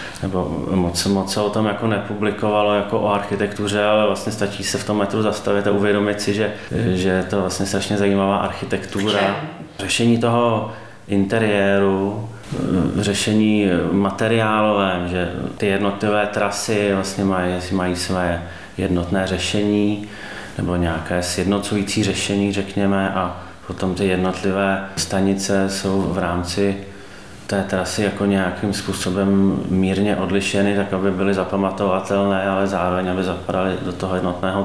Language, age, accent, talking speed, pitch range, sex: Czech, 30-49, native, 125 wpm, 90-100 Hz, male